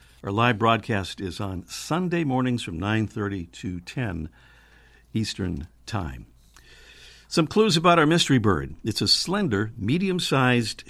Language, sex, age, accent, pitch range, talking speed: English, male, 60-79, American, 90-145 Hz, 125 wpm